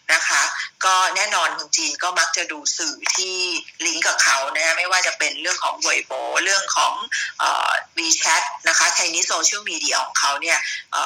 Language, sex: Thai, female